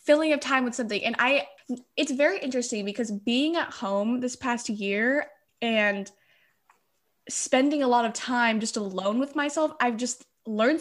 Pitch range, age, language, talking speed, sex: 215-280 Hz, 10-29, English, 165 wpm, female